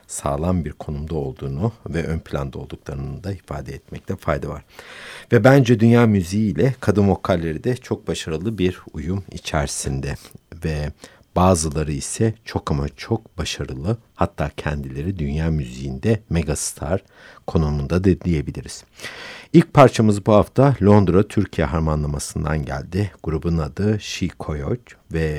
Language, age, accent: Turkish, 60-79, native